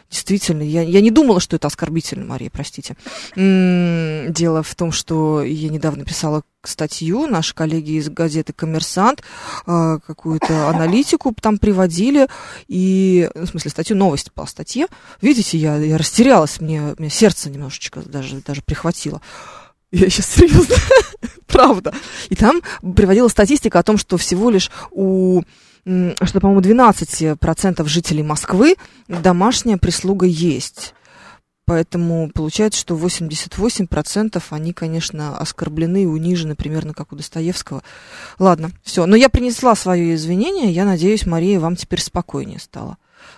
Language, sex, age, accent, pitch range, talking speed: Russian, female, 20-39, native, 160-215 Hz, 135 wpm